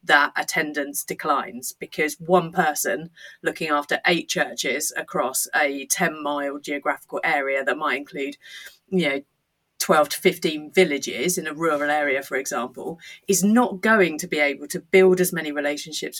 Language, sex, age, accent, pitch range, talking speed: English, female, 30-49, British, 145-190 Hz, 155 wpm